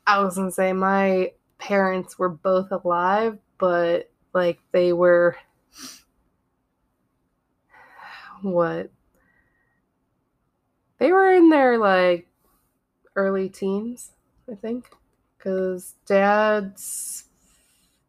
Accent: American